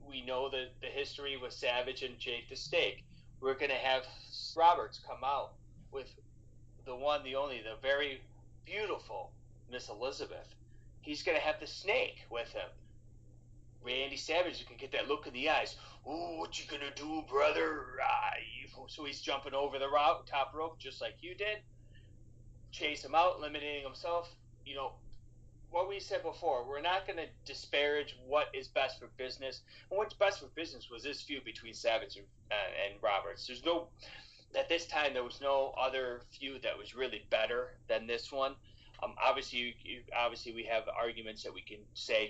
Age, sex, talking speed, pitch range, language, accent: 30-49, male, 180 wpm, 115-150 Hz, English, American